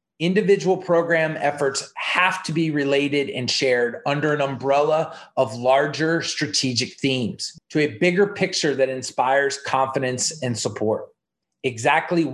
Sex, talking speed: male, 125 wpm